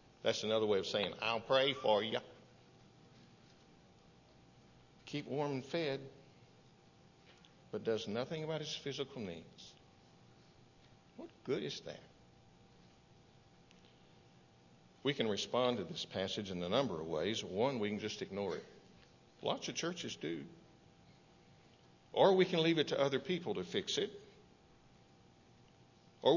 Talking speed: 130 wpm